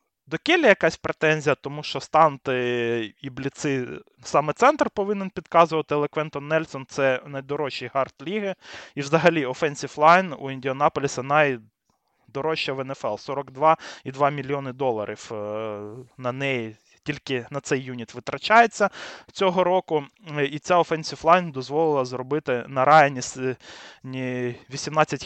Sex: male